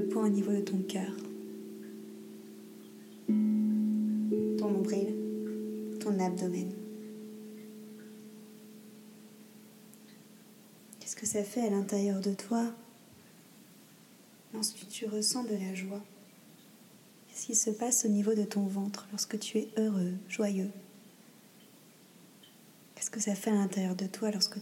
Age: 30-49